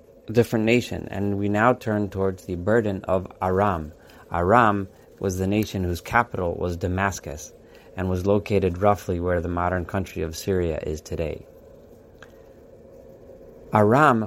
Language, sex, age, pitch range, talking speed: English, male, 30-49, 90-110 Hz, 135 wpm